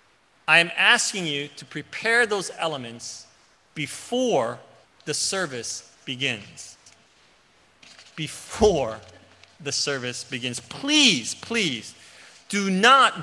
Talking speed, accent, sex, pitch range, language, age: 90 wpm, American, male, 115-170 Hz, English, 30-49